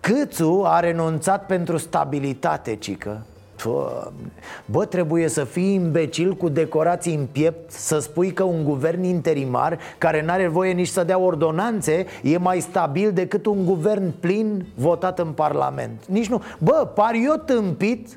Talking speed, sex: 150 wpm, male